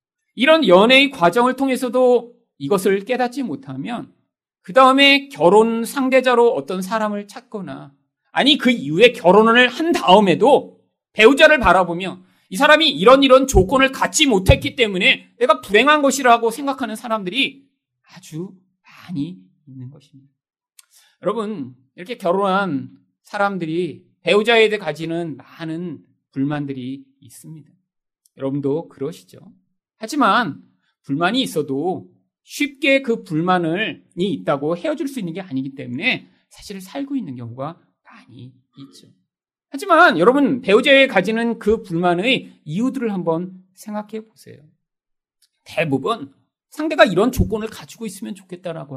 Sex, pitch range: male, 165-260 Hz